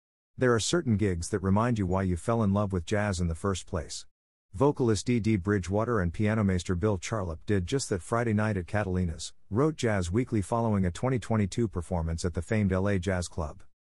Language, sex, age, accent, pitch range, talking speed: English, male, 50-69, American, 90-115 Hz, 205 wpm